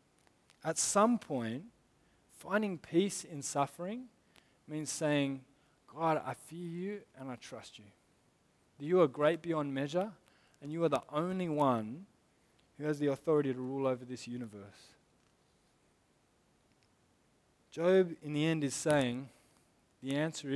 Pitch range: 135-180 Hz